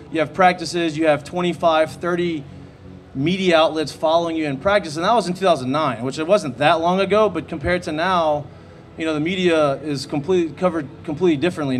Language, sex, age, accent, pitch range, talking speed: English, male, 30-49, American, 135-160 Hz, 190 wpm